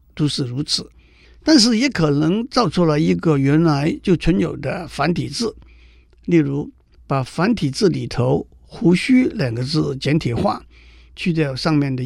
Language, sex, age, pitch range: Chinese, male, 50-69, 130-185 Hz